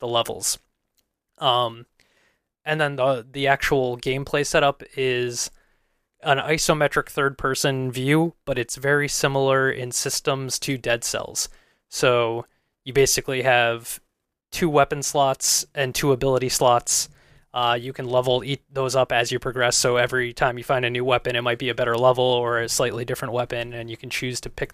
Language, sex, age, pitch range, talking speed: English, male, 20-39, 120-135 Hz, 170 wpm